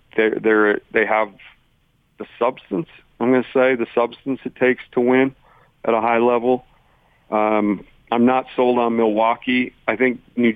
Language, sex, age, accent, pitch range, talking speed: English, male, 40-59, American, 100-115 Hz, 165 wpm